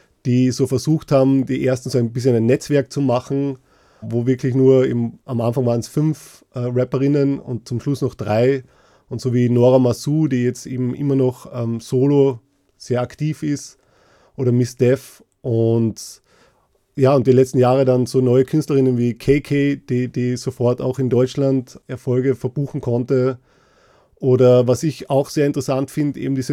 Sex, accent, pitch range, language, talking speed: male, German, 125-140 Hz, German, 170 wpm